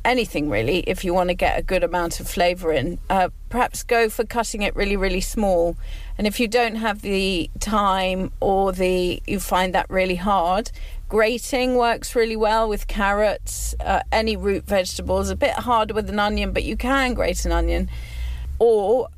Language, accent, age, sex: English, British, 40-59, female